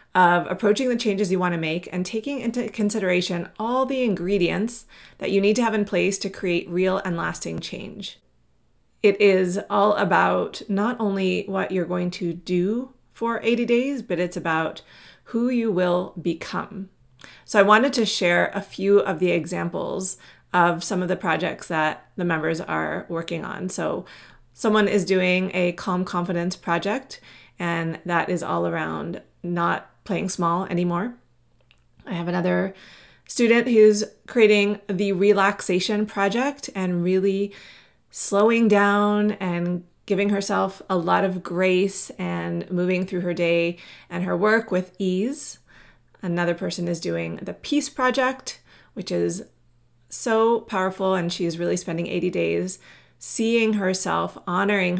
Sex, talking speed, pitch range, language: female, 150 wpm, 175-210 Hz, English